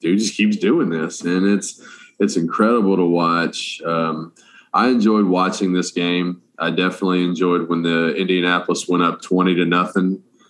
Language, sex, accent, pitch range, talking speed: English, male, American, 85-95 Hz, 160 wpm